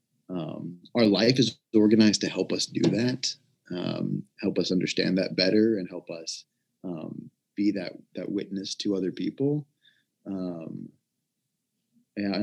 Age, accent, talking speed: 20-39, American, 135 wpm